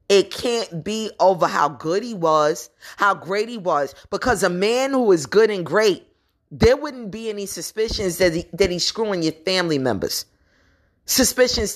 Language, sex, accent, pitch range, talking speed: English, female, American, 150-215 Hz, 175 wpm